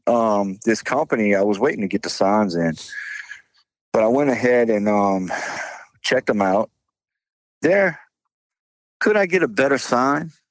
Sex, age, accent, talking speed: male, 50-69, American, 155 wpm